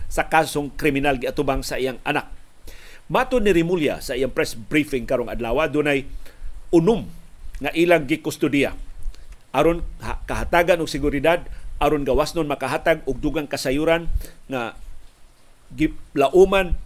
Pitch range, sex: 135-165 Hz, male